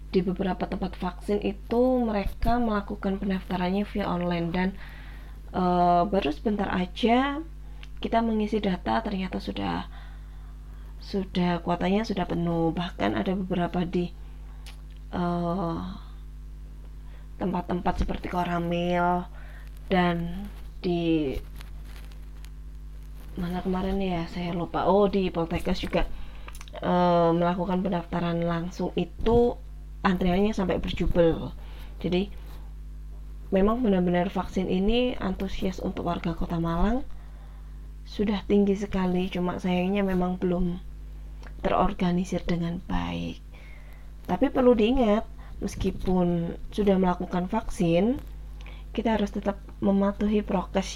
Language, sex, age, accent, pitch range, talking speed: Indonesian, female, 20-39, native, 170-195 Hz, 100 wpm